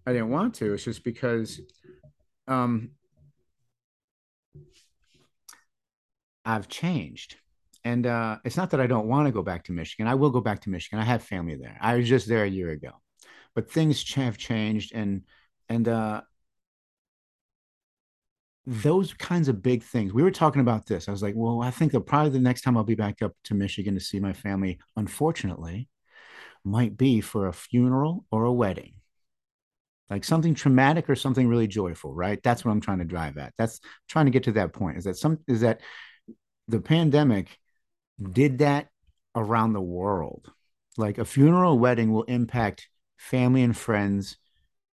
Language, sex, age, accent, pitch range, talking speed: English, male, 50-69, American, 100-125 Hz, 175 wpm